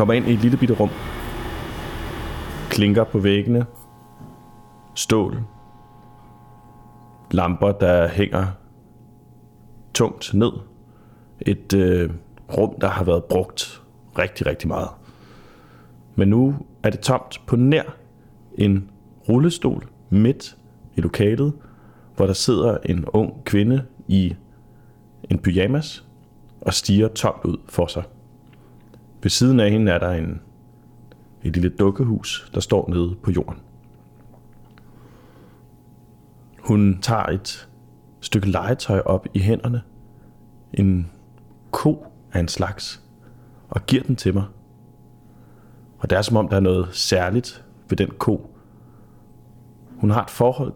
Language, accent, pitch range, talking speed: Danish, native, 90-120 Hz, 120 wpm